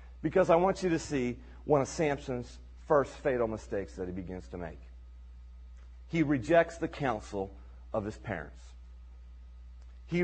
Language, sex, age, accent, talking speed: English, male, 40-59, American, 145 wpm